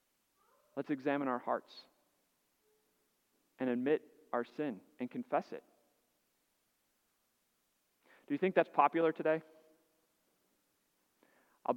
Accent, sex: American, male